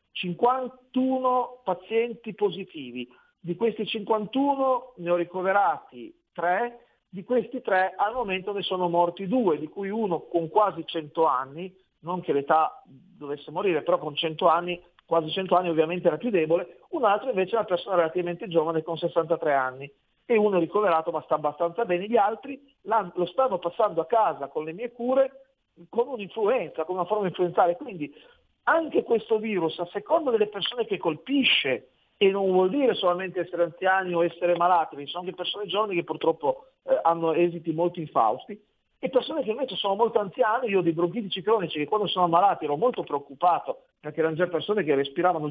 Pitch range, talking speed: 170-235 Hz, 180 wpm